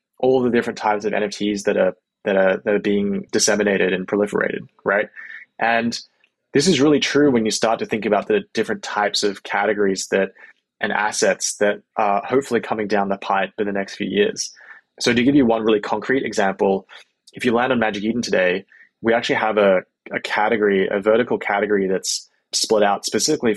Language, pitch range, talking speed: English, 100-115 Hz, 195 wpm